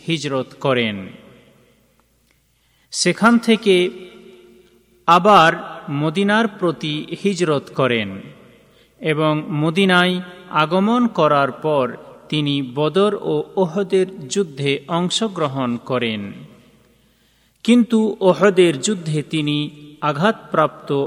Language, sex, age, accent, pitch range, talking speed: Bengali, male, 40-59, native, 145-195 Hz, 75 wpm